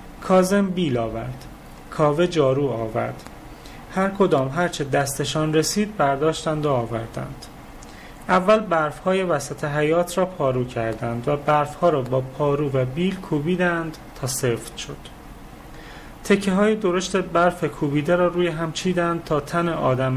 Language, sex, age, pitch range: Persian, male, 30-49, 125-175 Hz